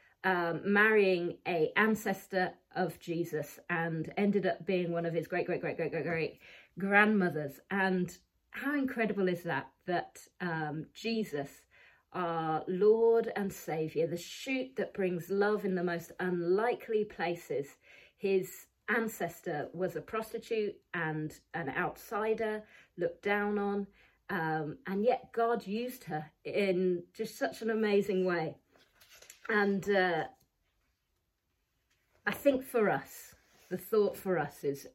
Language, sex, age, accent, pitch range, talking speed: English, female, 40-59, British, 170-215 Hz, 120 wpm